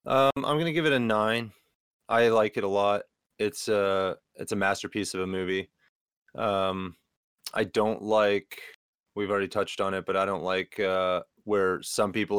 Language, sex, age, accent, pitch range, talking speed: English, male, 30-49, American, 95-105 Hz, 180 wpm